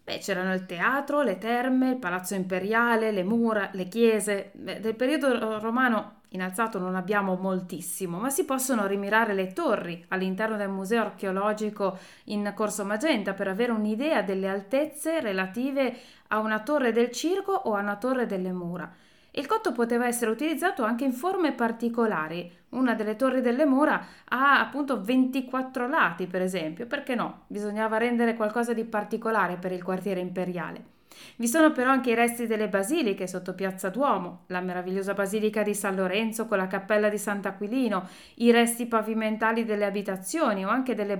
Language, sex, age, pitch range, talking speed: Italian, female, 20-39, 190-245 Hz, 165 wpm